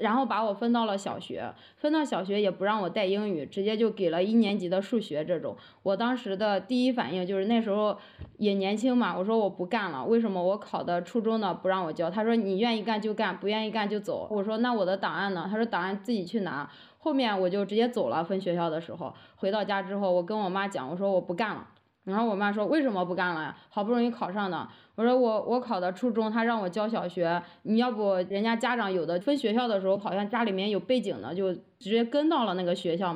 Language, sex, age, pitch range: Chinese, female, 20-39, 185-230 Hz